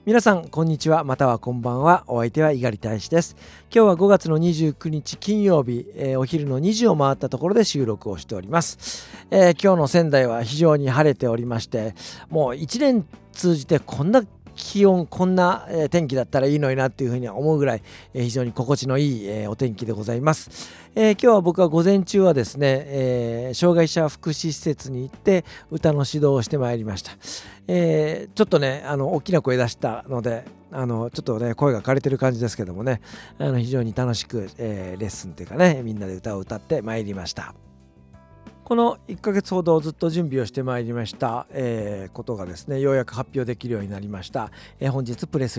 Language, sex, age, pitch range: Japanese, male, 50-69, 115-165 Hz